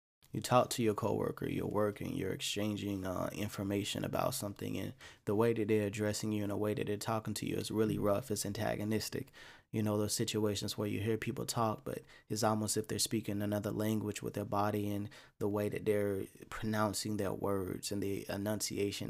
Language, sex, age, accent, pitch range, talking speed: English, male, 20-39, American, 100-115 Hz, 205 wpm